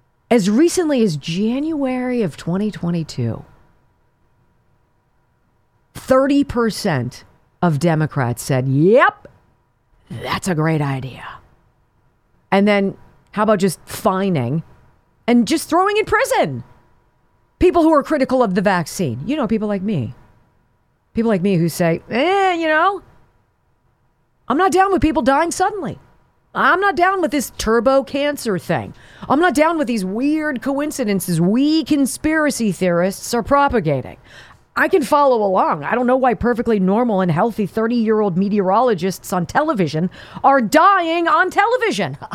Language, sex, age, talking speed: English, female, 40-59, 130 wpm